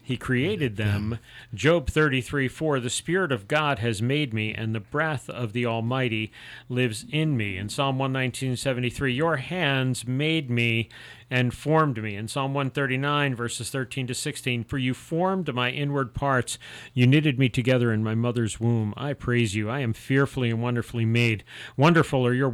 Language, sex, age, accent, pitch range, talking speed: English, male, 40-59, American, 120-140 Hz, 175 wpm